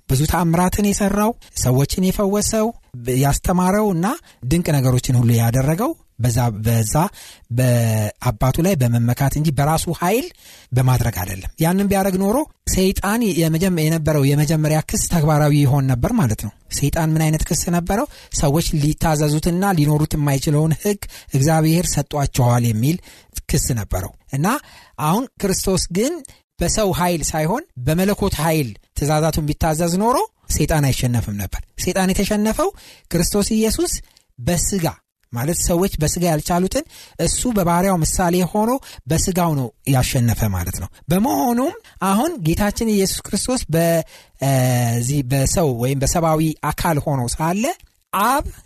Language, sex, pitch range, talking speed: Amharic, male, 135-195 Hz, 115 wpm